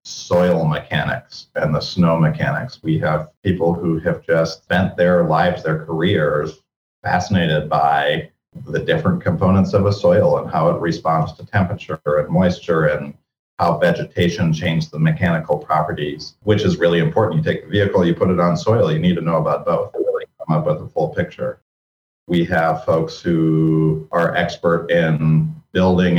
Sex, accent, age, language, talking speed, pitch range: male, American, 40-59, English, 170 wpm, 80-90 Hz